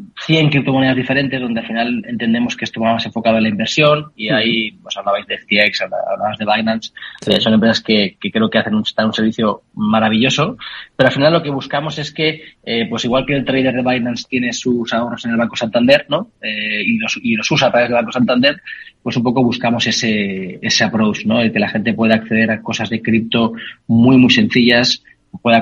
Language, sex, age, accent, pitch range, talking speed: Spanish, male, 20-39, Spanish, 110-125 Hz, 220 wpm